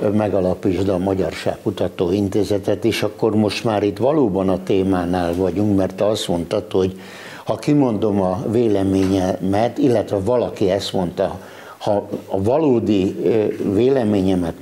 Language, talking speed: Hungarian, 120 wpm